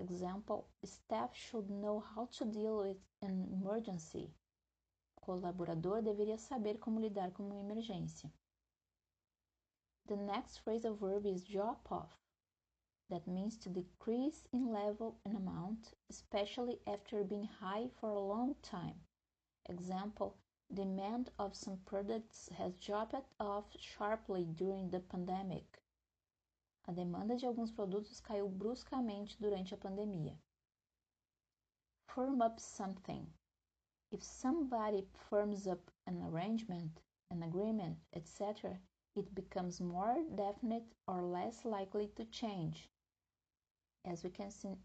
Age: 20-39